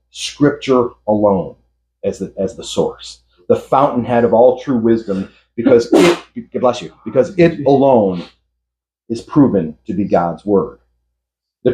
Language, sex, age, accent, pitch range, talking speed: English, male, 40-59, American, 115-160 Hz, 140 wpm